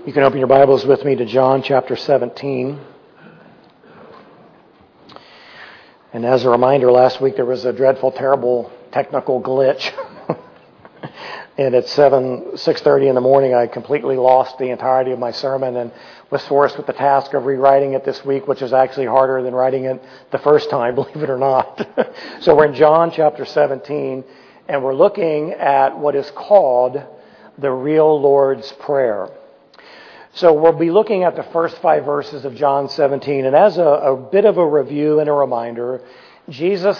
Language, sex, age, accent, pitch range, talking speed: English, male, 40-59, American, 135-160 Hz, 170 wpm